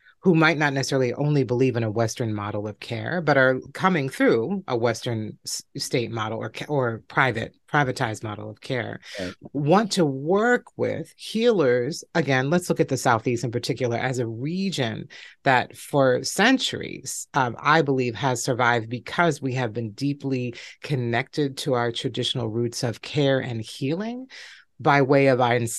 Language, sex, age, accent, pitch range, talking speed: English, female, 30-49, American, 125-165 Hz, 160 wpm